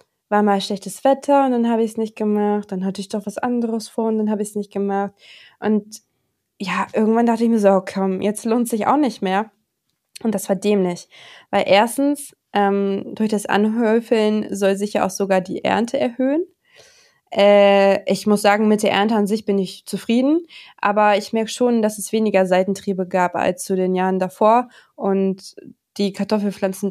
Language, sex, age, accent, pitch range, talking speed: German, female, 20-39, German, 195-230 Hz, 195 wpm